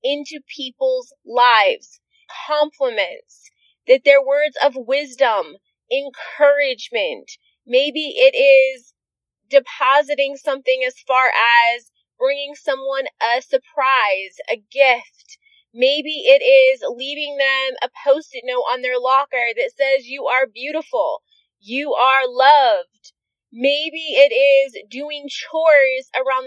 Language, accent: English, American